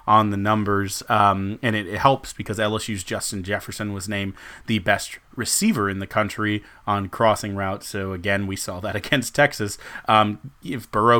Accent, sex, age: American, male, 30-49